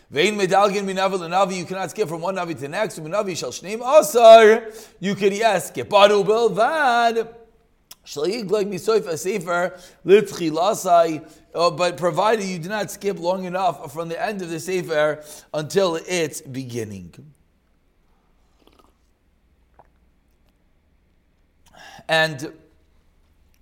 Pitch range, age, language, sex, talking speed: 150-210 Hz, 30-49, English, male, 90 wpm